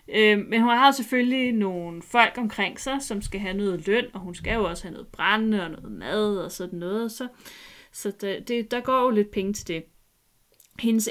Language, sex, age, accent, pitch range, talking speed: Danish, female, 30-49, native, 190-235 Hz, 195 wpm